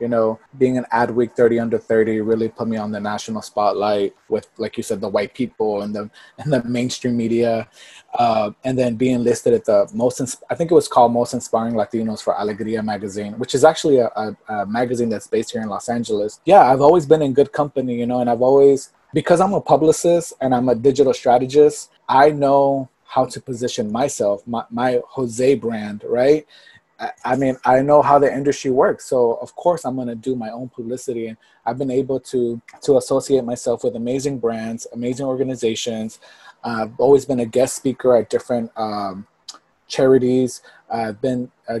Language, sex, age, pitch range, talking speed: English, male, 20-39, 115-135 Hz, 195 wpm